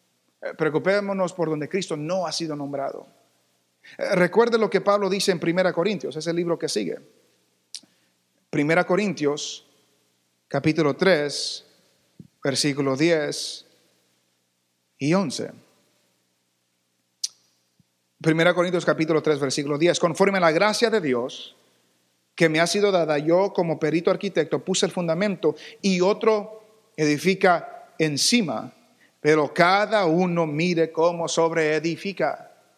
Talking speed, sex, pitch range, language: 115 wpm, male, 140-185 Hz, English